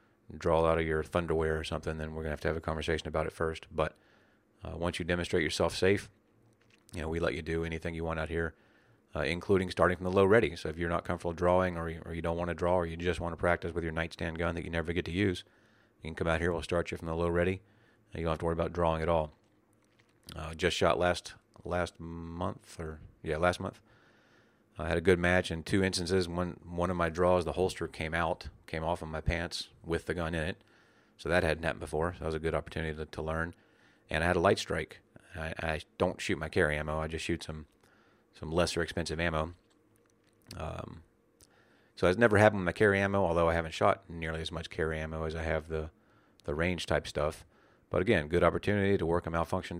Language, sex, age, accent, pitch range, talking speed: English, male, 40-59, American, 80-95 Hz, 240 wpm